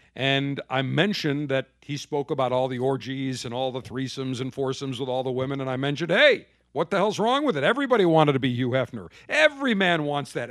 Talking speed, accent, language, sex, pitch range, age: 230 wpm, American, English, male, 130-195 Hz, 50-69